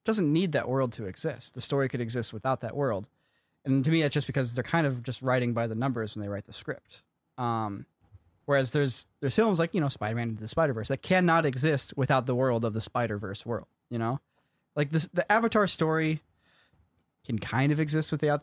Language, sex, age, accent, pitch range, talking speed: English, male, 20-39, American, 115-145 Hz, 220 wpm